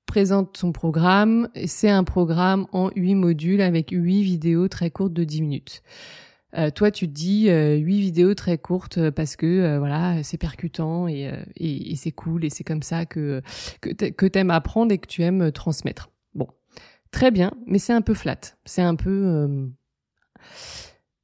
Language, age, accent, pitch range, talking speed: French, 20-39, French, 170-220 Hz, 180 wpm